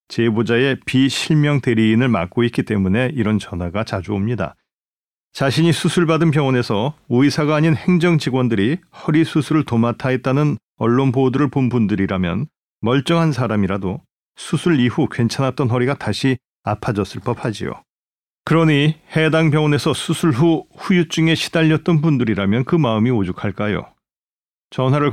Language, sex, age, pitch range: Korean, male, 40-59, 110-150 Hz